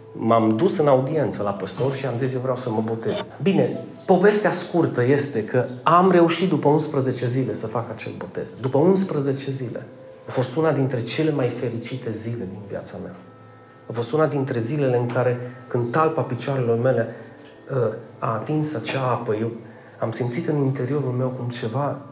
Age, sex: 40-59, male